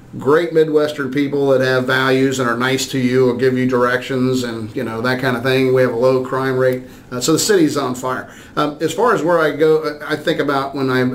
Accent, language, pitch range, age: American, English, 125-140 Hz, 40-59